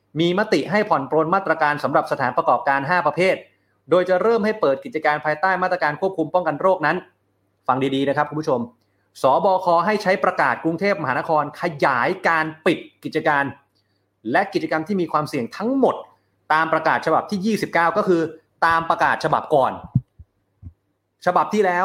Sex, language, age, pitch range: male, Thai, 30-49, 140-185 Hz